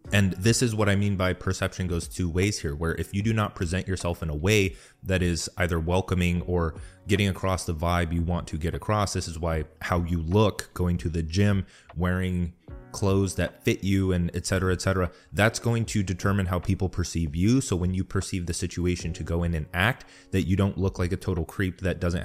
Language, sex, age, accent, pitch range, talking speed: English, male, 30-49, American, 85-100 Hz, 225 wpm